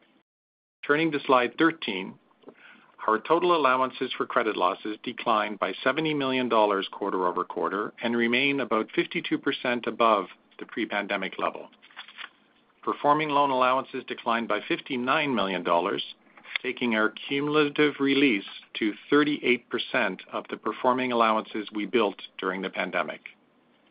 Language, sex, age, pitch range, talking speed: English, male, 50-69, 110-135 Hz, 120 wpm